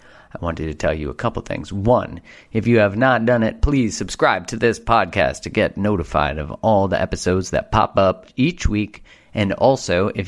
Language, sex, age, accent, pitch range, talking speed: English, male, 30-49, American, 90-110 Hz, 205 wpm